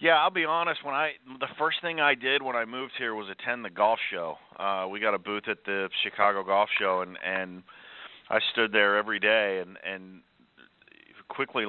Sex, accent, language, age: male, American, English, 40-59